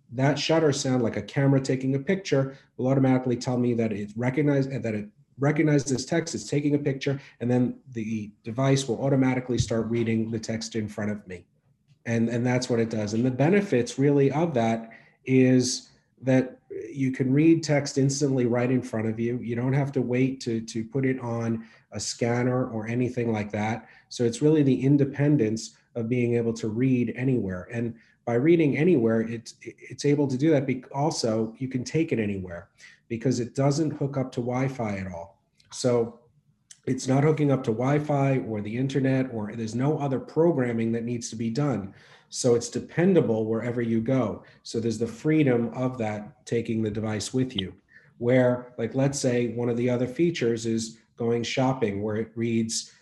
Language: English